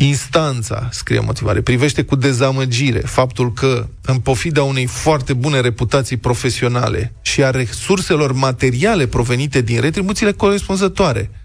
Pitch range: 115-150 Hz